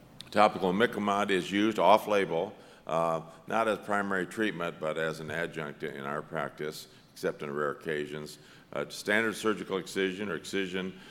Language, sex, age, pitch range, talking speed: English, male, 50-69, 85-105 Hz, 145 wpm